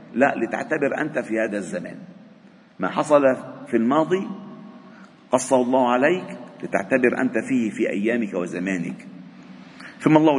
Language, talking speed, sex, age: Arabic, 120 wpm, male, 50-69